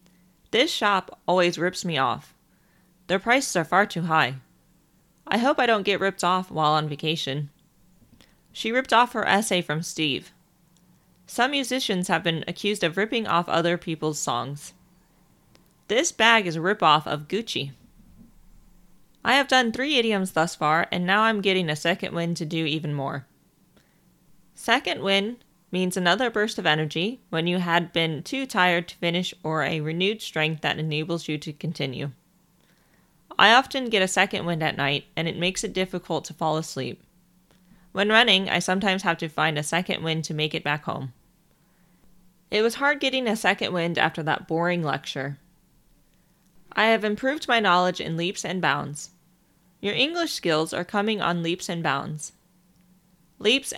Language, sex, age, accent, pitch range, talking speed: English, female, 30-49, American, 160-200 Hz, 165 wpm